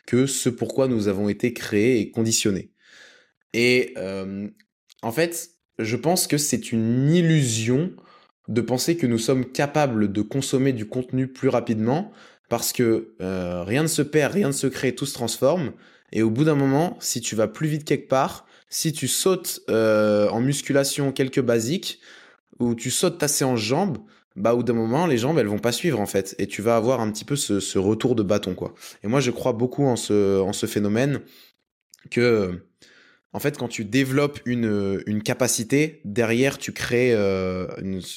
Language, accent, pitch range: French, French, 110-140 Hz